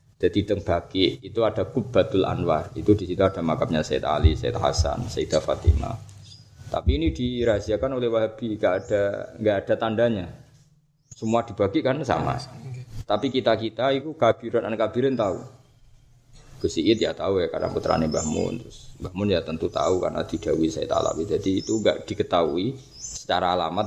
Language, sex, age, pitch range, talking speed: Malay, male, 20-39, 85-120 Hz, 160 wpm